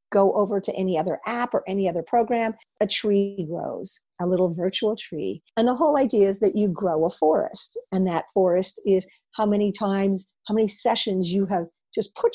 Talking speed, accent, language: 200 wpm, American, English